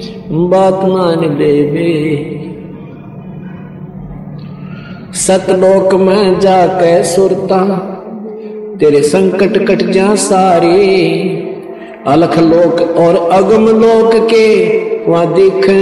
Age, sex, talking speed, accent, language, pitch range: 50-69, male, 75 wpm, native, Hindi, 170-195 Hz